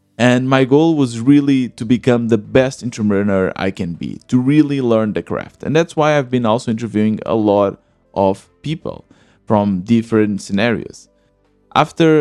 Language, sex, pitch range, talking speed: English, male, 110-135 Hz, 160 wpm